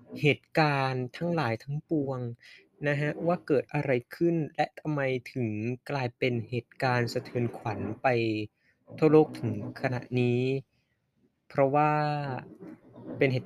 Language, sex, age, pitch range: Thai, male, 20-39, 120-155 Hz